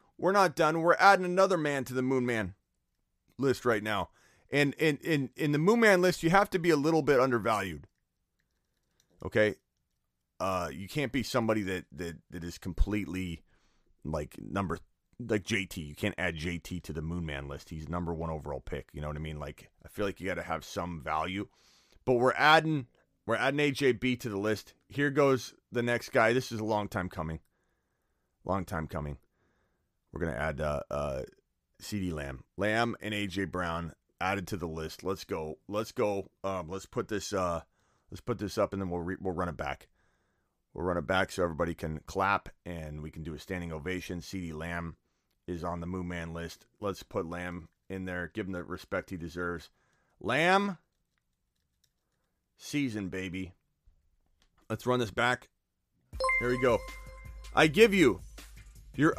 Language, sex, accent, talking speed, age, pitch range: English, male, American, 185 wpm, 30-49, 85-125 Hz